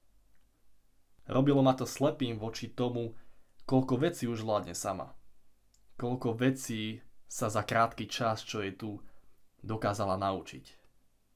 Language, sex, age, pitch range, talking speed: Slovak, male, 20-39, 100-120 Hz, 120 wpm